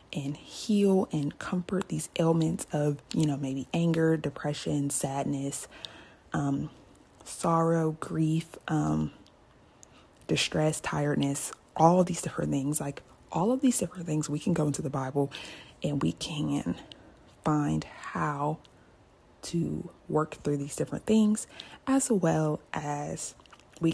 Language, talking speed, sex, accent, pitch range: English, 125 wpm, female, American, 145-170 Hz